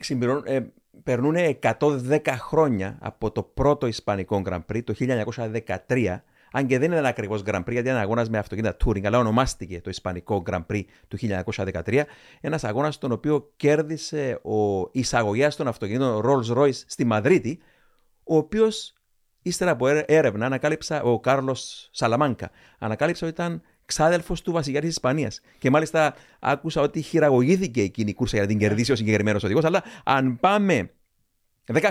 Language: Greek